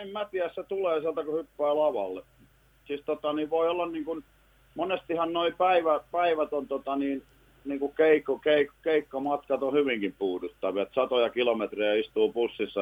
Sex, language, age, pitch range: male, Finnish, 50-69, 120-160 Hz